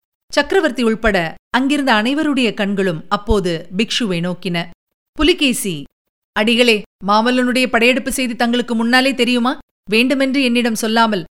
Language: Tamil